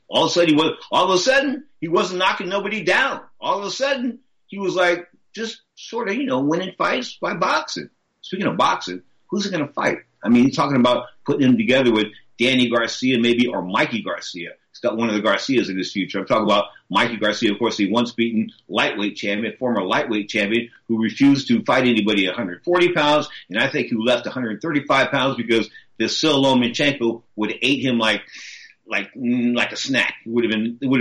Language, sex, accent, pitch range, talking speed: English, male, American, 105-135 Hz, 215 wpm